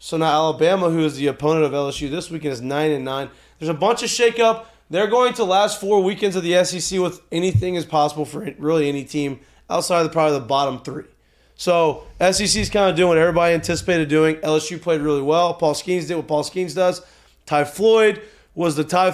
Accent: American